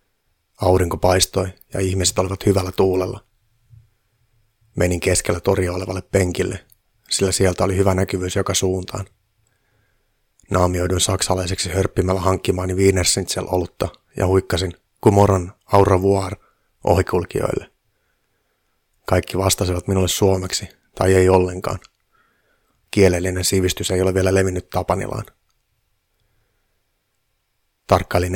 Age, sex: 30-49, male